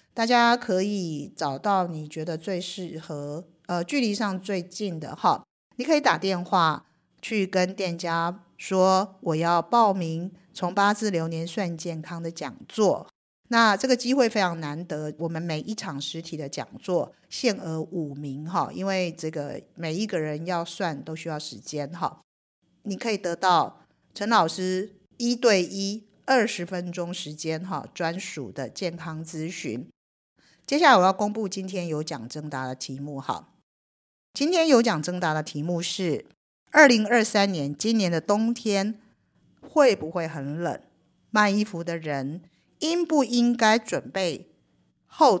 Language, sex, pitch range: Chinese, female, 160-205 Hz